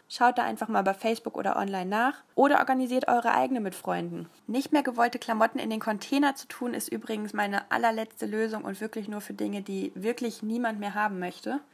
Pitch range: 205-255 Hz